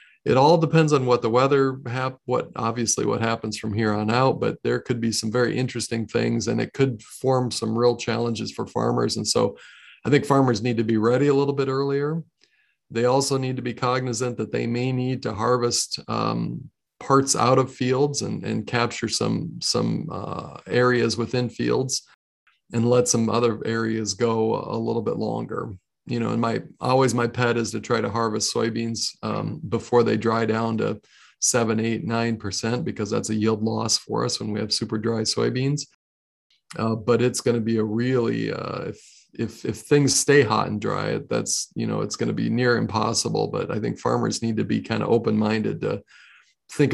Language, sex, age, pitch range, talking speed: English, male, 40-59, 110-130 Hz, 200 wpm